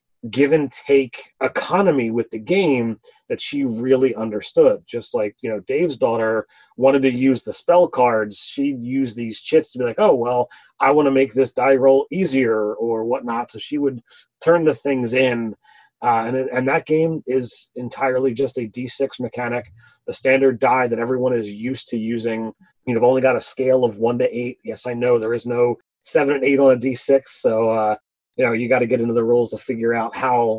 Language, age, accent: English, 30-49, American